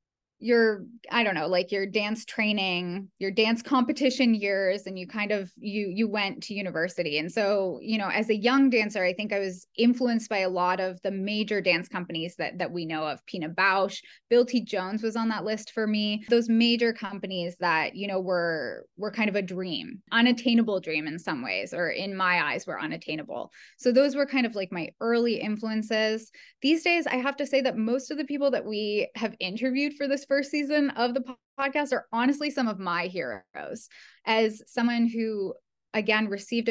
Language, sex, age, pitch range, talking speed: English, female, 10-29, 190-245 Hz, 200 wpm